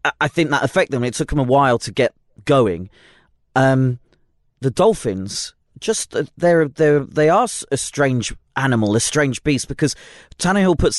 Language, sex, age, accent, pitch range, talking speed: English, male, 30-49, British, 115-145 Hz, 145 wpm